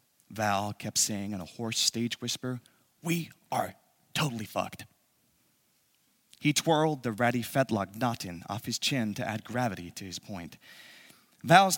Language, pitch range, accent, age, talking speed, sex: English, 110-140 Hz, American, 30-49, 145 wpm, male